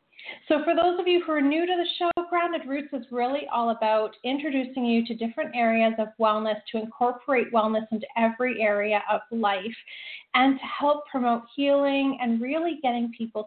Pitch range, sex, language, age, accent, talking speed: 225-280 Hz, female, English, 30-49, American, 185 wpm